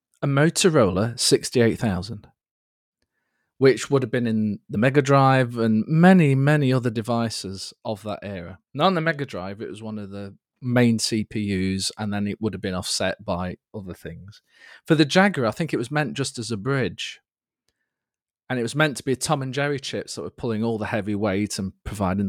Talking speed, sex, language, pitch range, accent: 195 wpm, male, English, 100-150 Hz, British